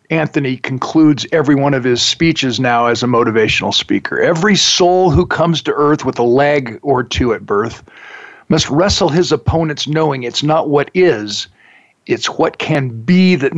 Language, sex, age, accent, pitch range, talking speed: English, male, 50-69, American, 125-165 Hz, 170 wpm